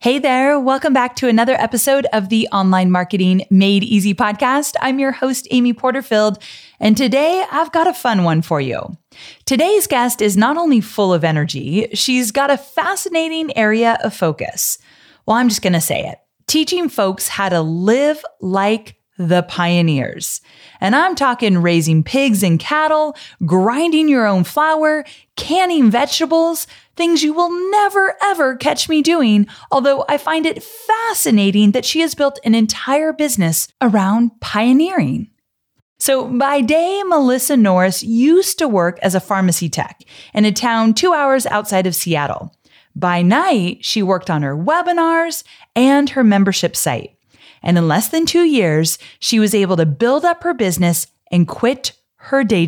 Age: 20-39